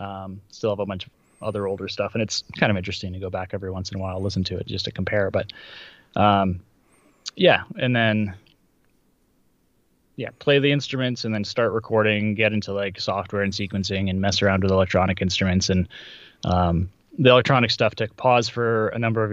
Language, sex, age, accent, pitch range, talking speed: English, male, 20-39, American, 95-120 Hz, 200 wpm